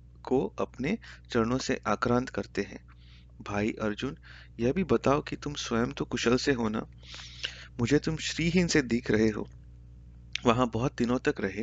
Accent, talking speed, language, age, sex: native, 150 wpm, Hindi, 30-49, male